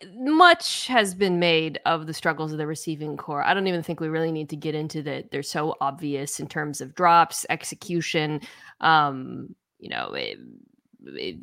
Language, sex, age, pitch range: English, female, 20-39, 160-210 Hz